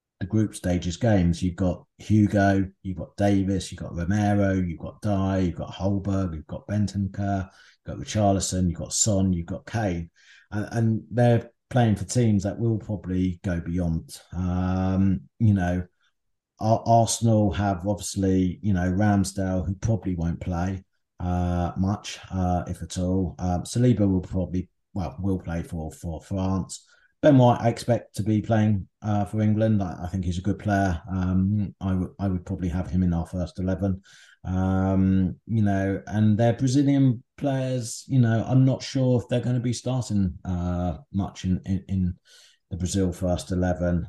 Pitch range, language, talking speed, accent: 90-105 Hz, English, 175 wpm, British